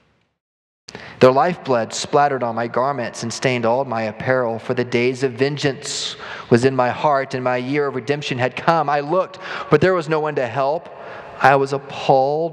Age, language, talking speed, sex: 30-49, English, 185 wpm, male